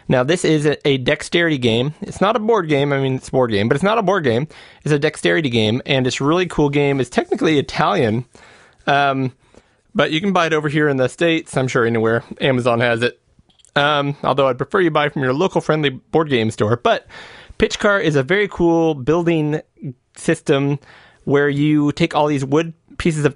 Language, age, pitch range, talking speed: English, 30-49, 135-165 Hz, 210 wpm